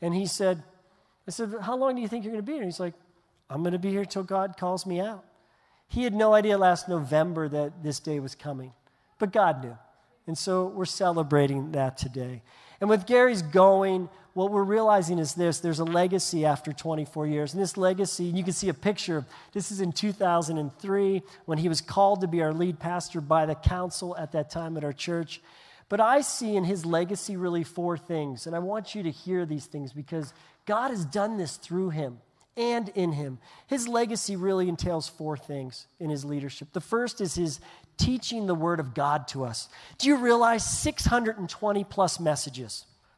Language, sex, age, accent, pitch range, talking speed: English, male, 40-59, American, 155-200 Hz, 205 wpm